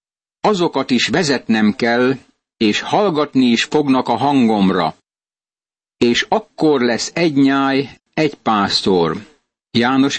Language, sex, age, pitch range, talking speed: Hungarian, male, 60-79, 120-150 Hz, 105 wpm